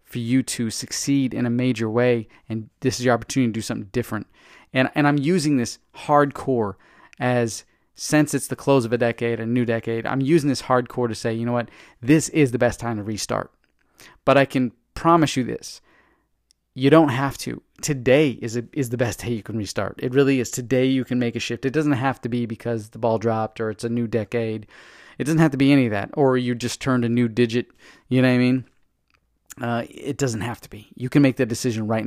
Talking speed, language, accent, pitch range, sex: 230 wpm, English, American, 115-130 Hz, male